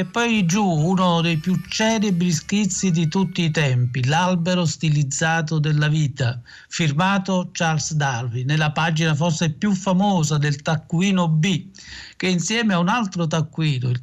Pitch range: 150-180 Hz